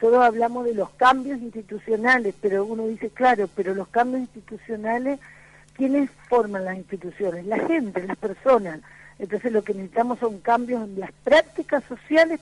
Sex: female